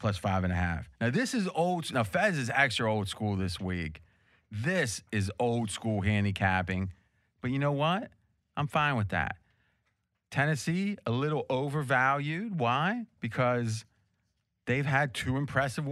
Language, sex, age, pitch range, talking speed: English, male, 30-49, 105-155 Hz, 150 wpm